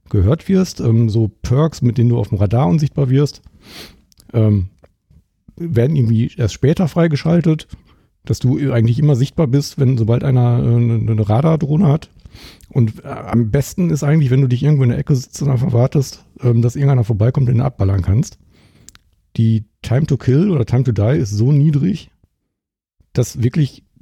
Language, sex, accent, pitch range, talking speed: German, male, German, 110-140 Hz, 175 wpm